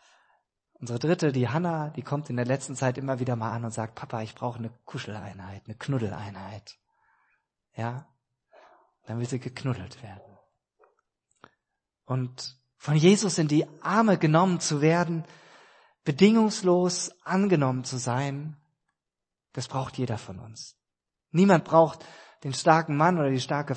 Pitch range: 120-160 Hz